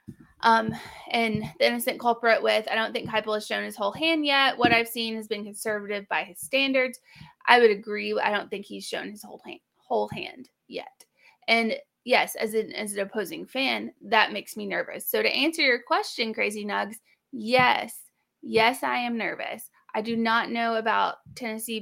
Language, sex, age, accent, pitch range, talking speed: English, female, 20-39, American, 210-260 Hz, 190 wpm